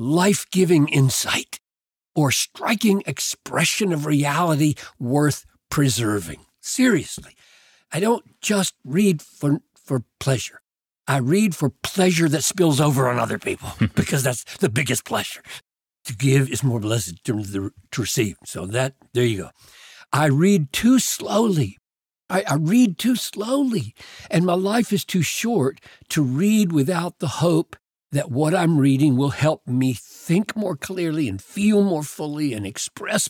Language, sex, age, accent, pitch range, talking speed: English, male, 60-79, American, 120-175 Hz, 145 wpm